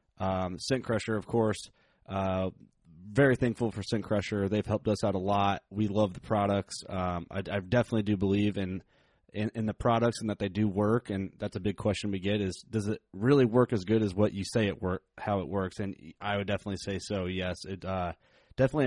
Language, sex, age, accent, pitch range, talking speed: English, male, 30-49, American, 95-115 Hz, 225 wpm